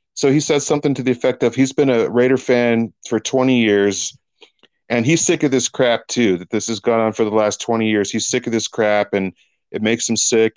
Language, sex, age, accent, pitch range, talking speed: English, male, 40-59, American, 120-165 Hz, 245 wpm